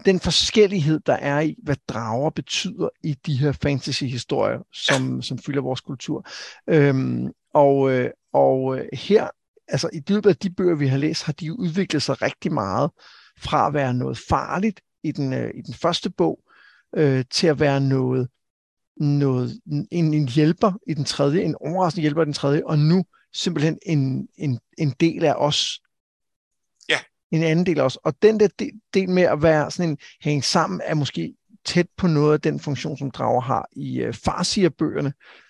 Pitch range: 140-175 Hz